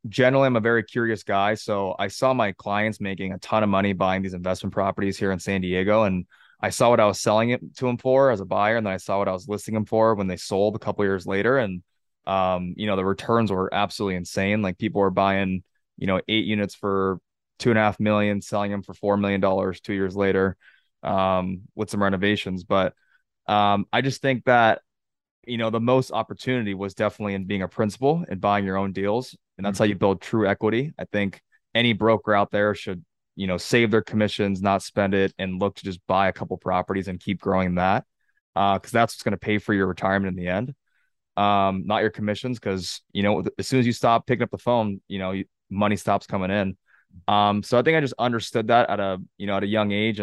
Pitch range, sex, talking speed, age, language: 95-110 Hz, male, 240 wpm, 20-39, English